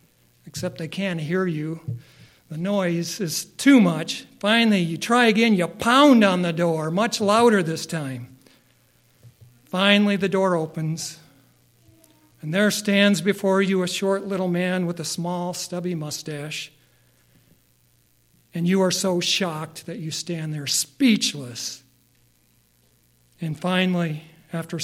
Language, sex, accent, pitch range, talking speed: English, male, American, 135-195 Hz, 130 wpm